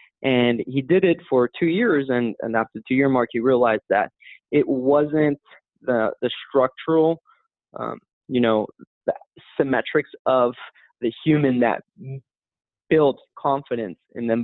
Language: English